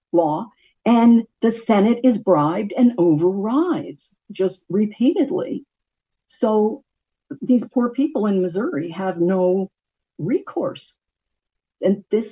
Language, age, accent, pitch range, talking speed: English, 50-69, American, 150-205 Hz, 100 wpm